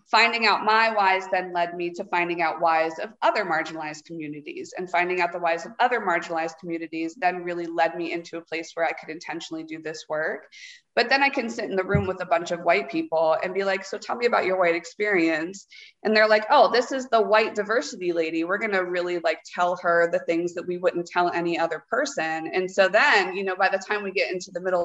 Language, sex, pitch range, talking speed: English, female, 170-215 Hz, 245 wpm